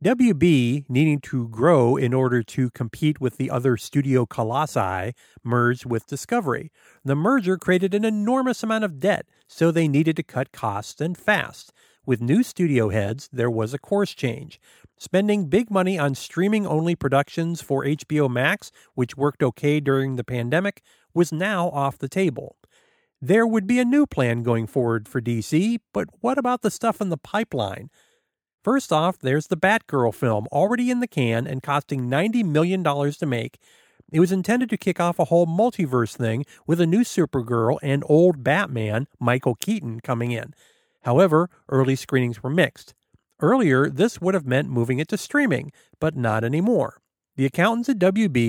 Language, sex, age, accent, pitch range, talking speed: English, male, 50-69, American, 125-190 Hz, 170 wpm